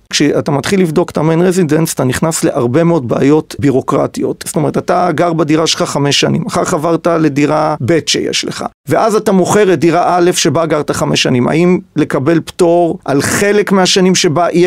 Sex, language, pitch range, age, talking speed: male, Hebrew, 150-180 Hz, 40-59, 175 wpm